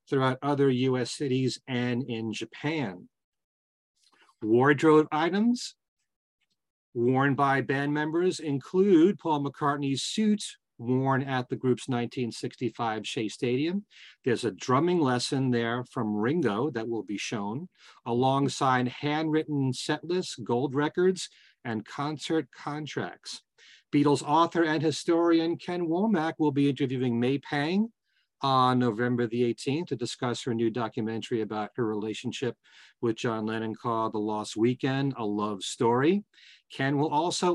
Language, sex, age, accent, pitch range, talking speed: English, male, 40-59, American, 120-160 Hz, 130 wpm